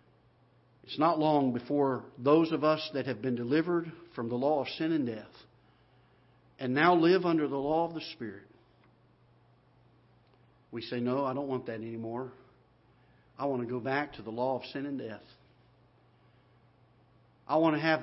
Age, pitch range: 50-69, 120-150 Hz